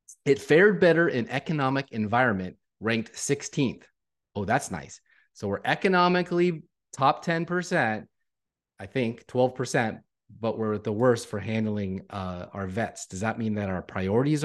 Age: 30-49